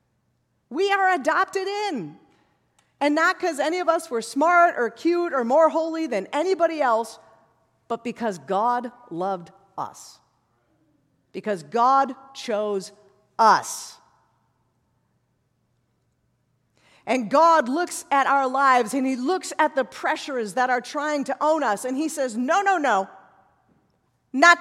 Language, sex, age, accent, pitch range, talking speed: English, female, 50-69, American, 210-310 Hz, 130 wpm